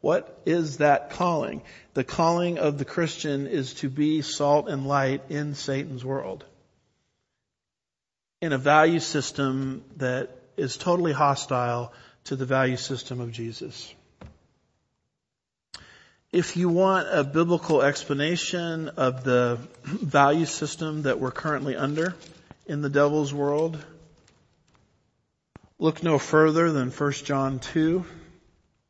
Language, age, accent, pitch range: English, 50-69, American, 135-160 Hz